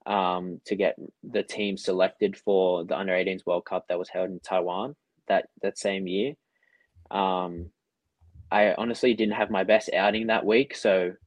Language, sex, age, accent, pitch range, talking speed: English, male, 10-29, Australian, 90-100 Hz, 165 wpm